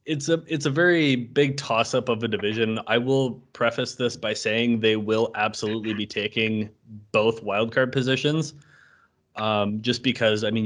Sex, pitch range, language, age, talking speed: male, 105-125 Hz, English, 20-39, 170 wpm